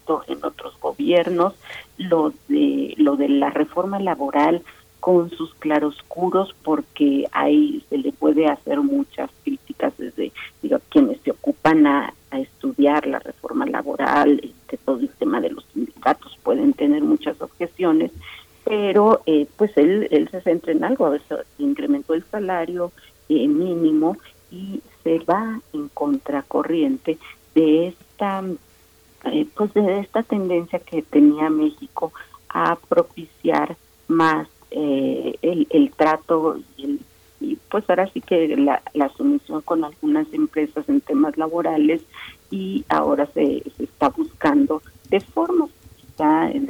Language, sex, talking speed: Italian, female, 135 wpm